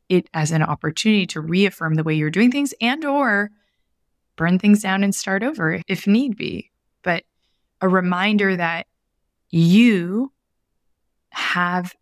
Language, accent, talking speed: English, American, 140 wpm